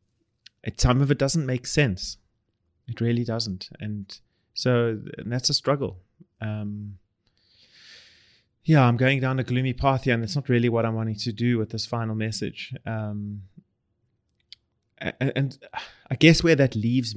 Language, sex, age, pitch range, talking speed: English, male, 30-49, 110-130 Hz, 155 wpm